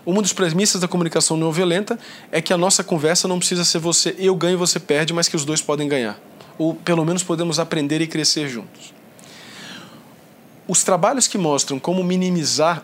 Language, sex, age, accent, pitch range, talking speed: Portuguese, male, 20-39, Brazilian, 155-195 Hz, 185 wpm